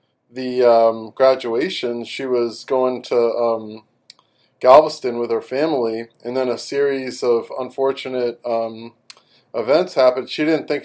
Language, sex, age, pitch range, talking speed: English, male, 20-39, 115-130 Hz, 135 wpm